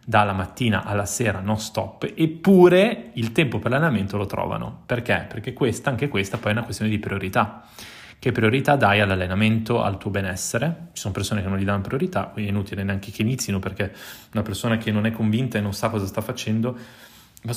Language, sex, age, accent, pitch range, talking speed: Italian, male, 20-39, native, 100-120 Hz, 200 wpm